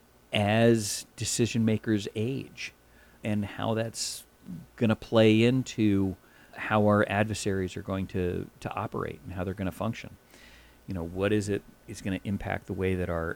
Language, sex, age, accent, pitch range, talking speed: English, male, 40-59, American, 90-110 Hz, 165 wpm